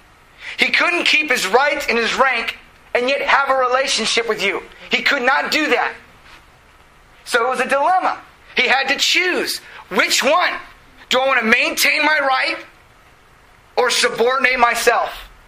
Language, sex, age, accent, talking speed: English, male, 30-49, American, 160 wpm